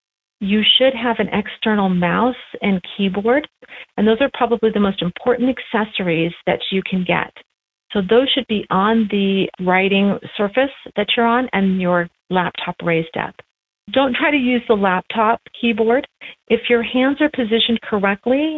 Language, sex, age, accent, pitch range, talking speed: English, female, 40-59, American, 185-235 Hz, 160 wpm